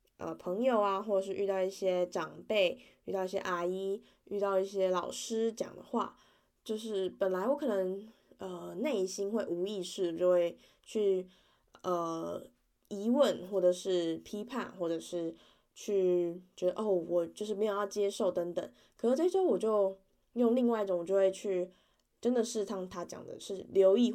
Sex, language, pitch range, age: female, Chinese, 180-215 Hz, 20-39